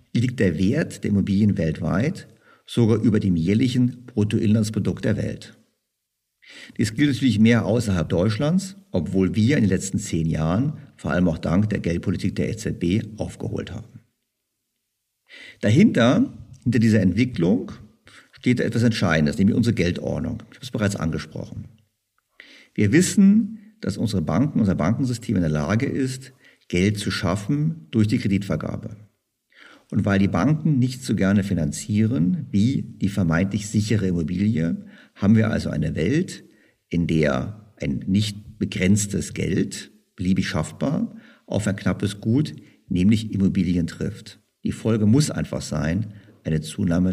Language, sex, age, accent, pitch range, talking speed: German, male, 50-69, German, 95-120 Hz, 140 wpm